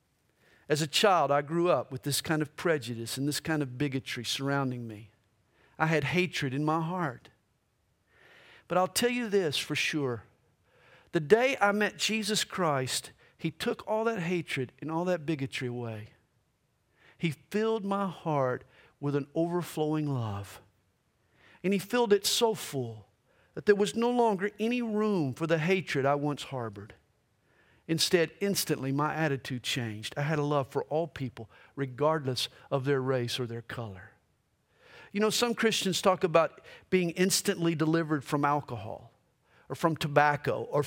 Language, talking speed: English, 160 wpm